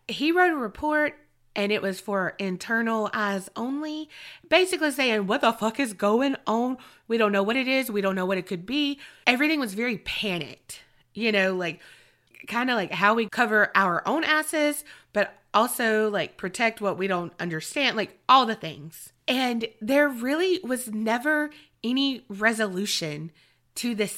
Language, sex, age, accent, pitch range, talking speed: English, female, 20-39, American, 195-260 Hz, 170 wpm